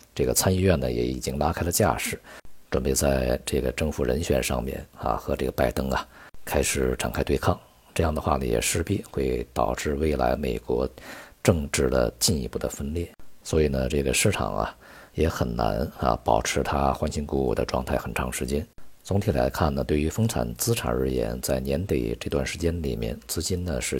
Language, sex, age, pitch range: Chinese, male, 50-69, 65-85 Hz